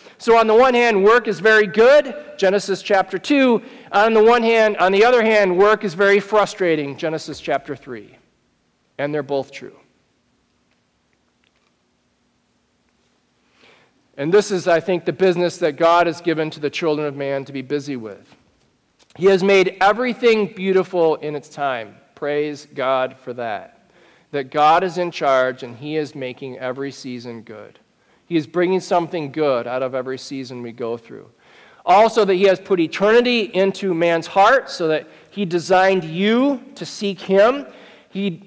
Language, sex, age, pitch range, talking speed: English, male, 40-59, 155-225 Hz, 165 wpm